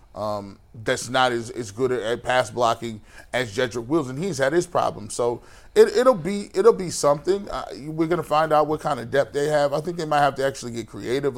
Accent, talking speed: American, 225 wpm